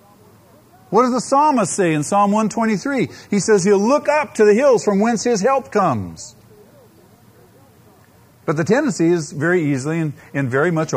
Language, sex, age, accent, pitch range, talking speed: English, male, 50-69, American, 125-195 Hz, 170 wpm